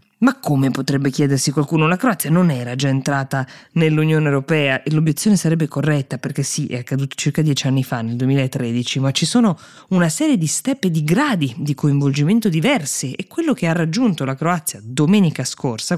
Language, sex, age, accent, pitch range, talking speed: Italian, female, 20-39, native, 135-160 Hz, 180 wpm